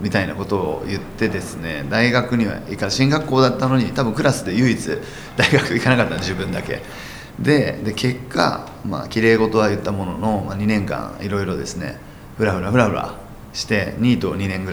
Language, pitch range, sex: Japanese, 100-125 Hz, male